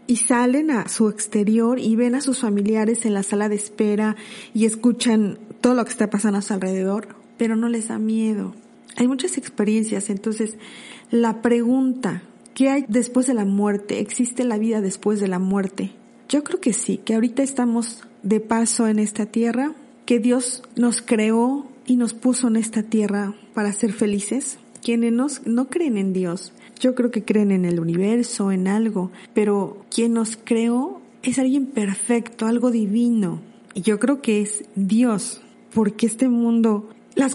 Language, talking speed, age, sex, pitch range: Spanish, 170 wpm, 40-59, female, 210-245 Hz